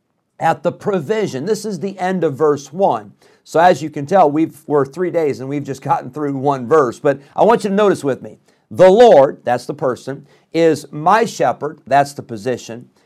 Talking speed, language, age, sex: 205 wpm, English, 50-69, male